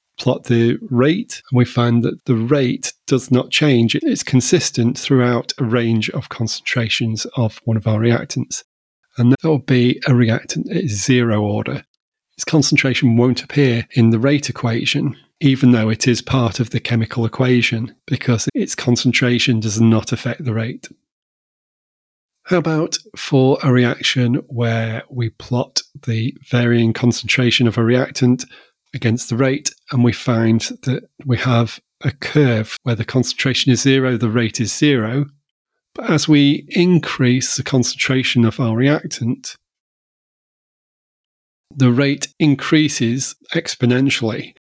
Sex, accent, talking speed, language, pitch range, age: male, British, 140 wpm, English, 115-135 Hz, 30-49